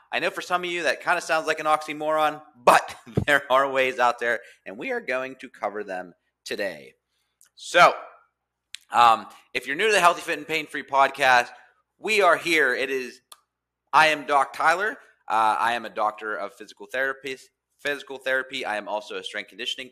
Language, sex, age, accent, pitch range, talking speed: English, male, 30-49, American, 125-170 Hz, 195 wpm